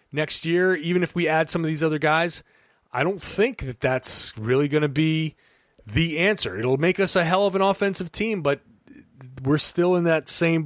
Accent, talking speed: American, 210 wpm